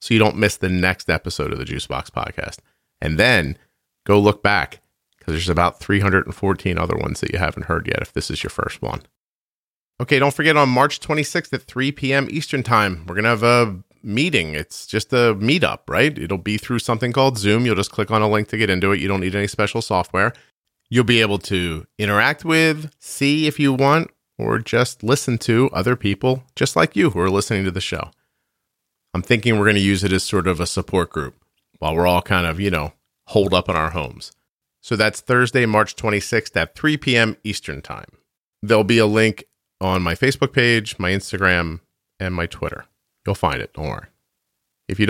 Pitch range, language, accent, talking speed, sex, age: 90-125 Hz, English, American, 210 wpm, male, 40-59